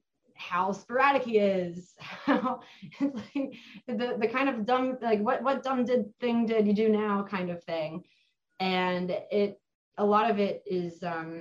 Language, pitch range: English, 170-225 Hz